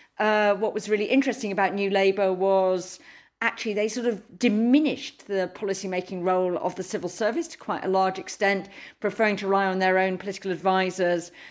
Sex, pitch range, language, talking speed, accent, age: female, 180-215 Hz, English, 180 wpm, British, 40-59